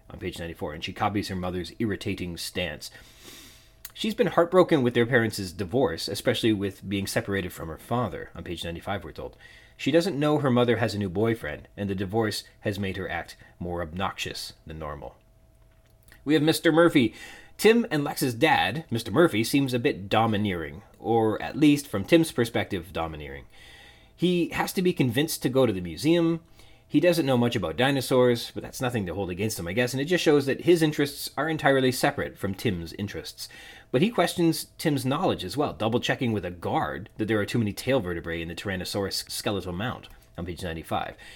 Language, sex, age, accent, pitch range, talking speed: English, male, 30-49, American, 100-145 Hz, 195 wpm